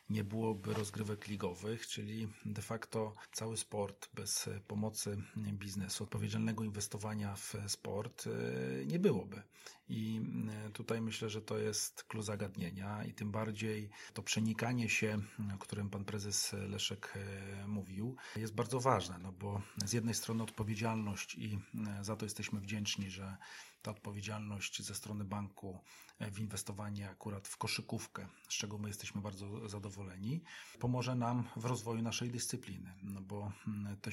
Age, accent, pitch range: 40-59, native, 100-110 Hz